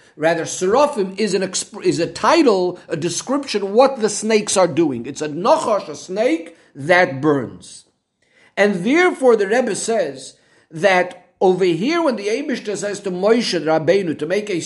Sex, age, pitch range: male, 50-69, 170-225 Hz